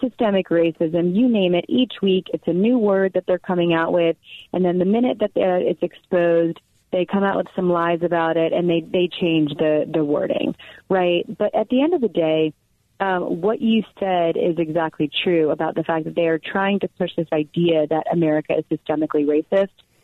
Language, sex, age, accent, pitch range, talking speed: English, female, 30-49, American, 160-195 Hz, 205 wpm